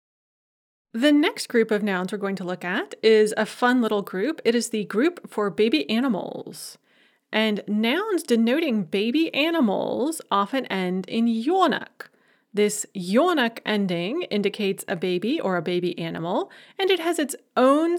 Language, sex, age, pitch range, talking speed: English, female, 30-49, 200-275 Hz, 155 wpm